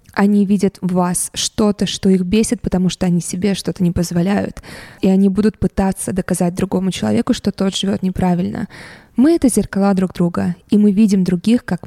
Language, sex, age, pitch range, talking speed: Russian, female, 20-39, 185-215 Hz, 180 wpm